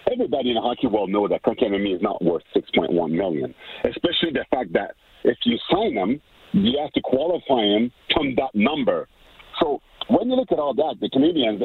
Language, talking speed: English, 195 wpm